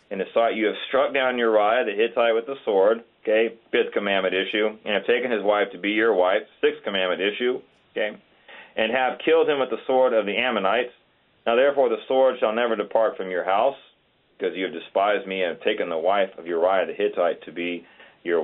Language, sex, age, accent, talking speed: English, male, 40-59, American, 210 wpm